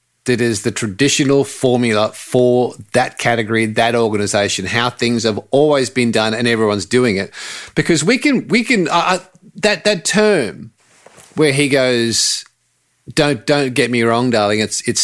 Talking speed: 160 wpm